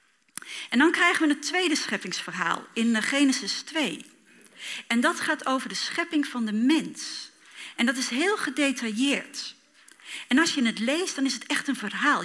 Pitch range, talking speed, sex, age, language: 230-305 Hz, 170 wpm, female, 40-59, Dutch